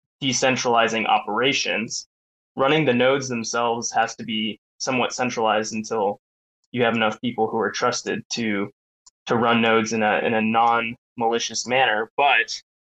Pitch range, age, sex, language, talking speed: 115-130 Hz, 20-39, male, English, 140 wpm